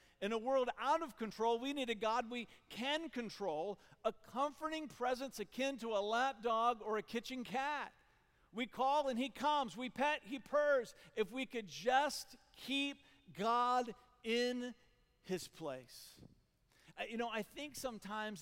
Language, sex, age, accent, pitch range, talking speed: English, male, 50-69, American, 180-240 Hz, 155 wpm